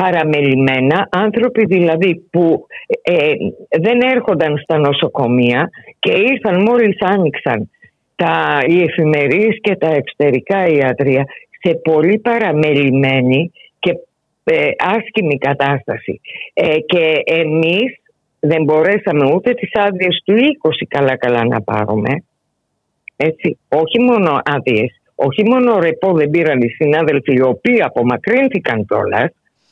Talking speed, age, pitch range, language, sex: 110 wpm, 50-69, 150-240 Hz, Greek, female